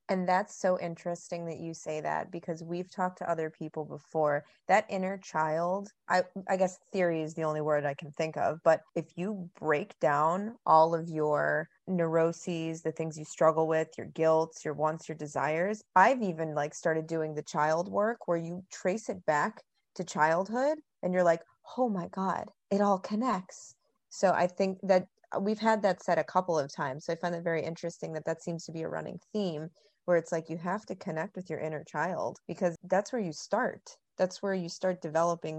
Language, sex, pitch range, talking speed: English, female, 160-190 Hz, 205 wpm